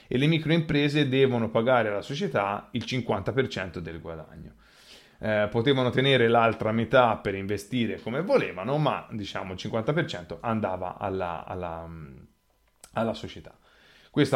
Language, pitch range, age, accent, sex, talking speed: Italian, 100-130 Hz, 30-49, native, male, 125 wpm